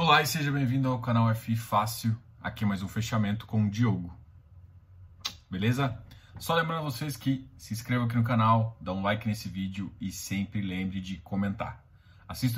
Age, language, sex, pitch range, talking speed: 20-39, Portuguese, male, 100-125 Hz, 180 wpm